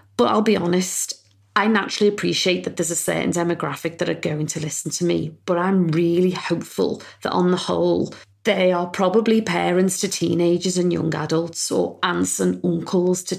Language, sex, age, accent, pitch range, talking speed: English, female, 30-49, British, 165-185 Hz, 185 wpm